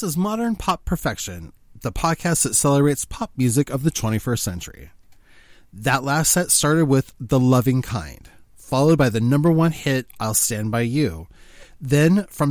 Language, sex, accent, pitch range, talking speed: English, male, American, 115-160 Hz, 165 wpm